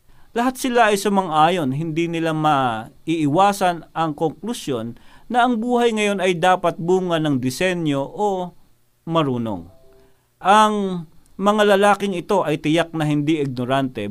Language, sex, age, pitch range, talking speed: Filipino, male, 50-69, 145-200 Hz, 125 wpm